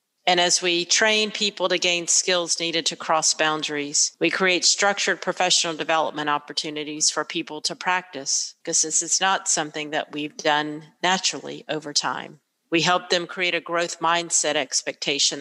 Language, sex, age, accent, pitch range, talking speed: English, female, 40-59, American, 150-185 Hz, 160 wpm